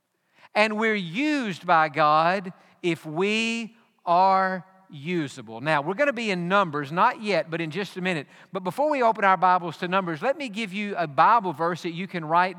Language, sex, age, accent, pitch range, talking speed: English, male, 50-69, American, 170-210 Hz, 200 wpm